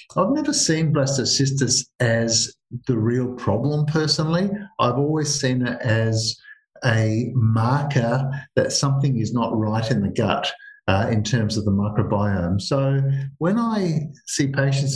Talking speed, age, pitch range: 140 wpm, 50-69, 115-145 Hz